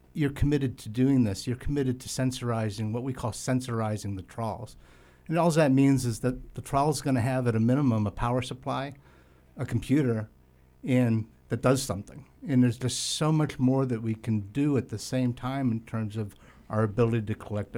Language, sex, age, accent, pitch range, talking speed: English, male, 60-79, American, 110-125 Hz, 195 wpm